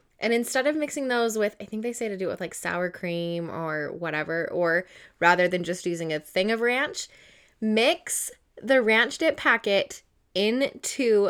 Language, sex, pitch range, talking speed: English, female, 180-235 Hz, 180 wpm